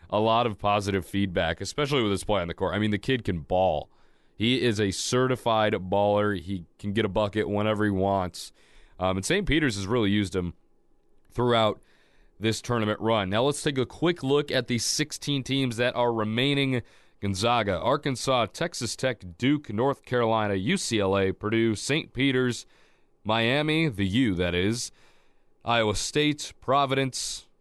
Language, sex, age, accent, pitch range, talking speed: English, male, 30-49, American, 95-125 Hz, 165 wpm